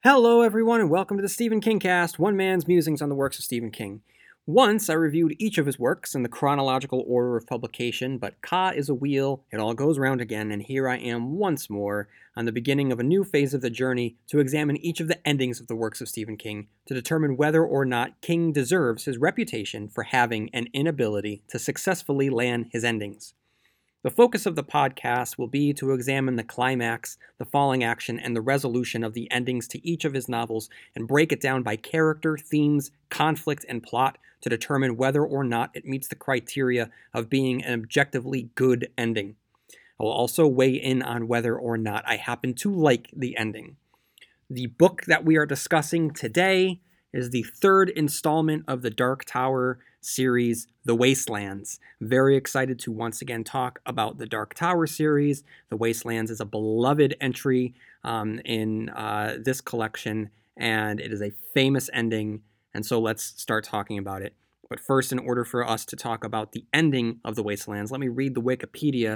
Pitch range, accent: 115-145 Hz, American